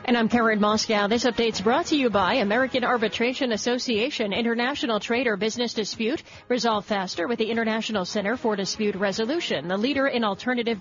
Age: 40-59